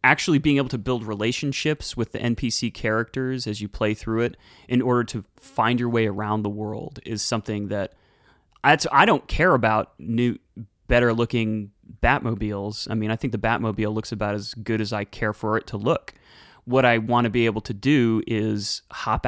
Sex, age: male, 30-49